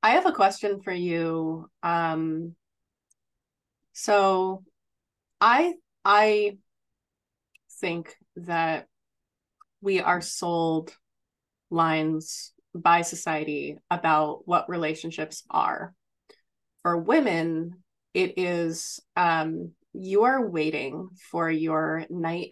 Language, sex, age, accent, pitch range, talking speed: English, female, 20-39, American, 165-195 Hz, 90 wpm